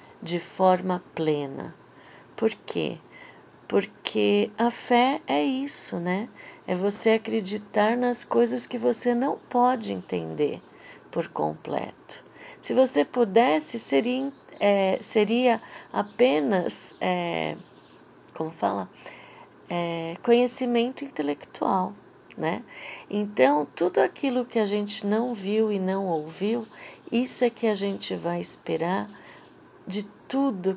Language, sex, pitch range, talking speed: Portuguese, female, 165-230 Hz, 110 wpm